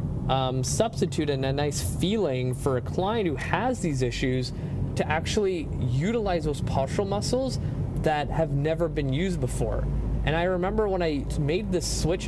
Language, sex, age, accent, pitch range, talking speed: English, male, 20-39, American, 130-165 Hz, 160 wpm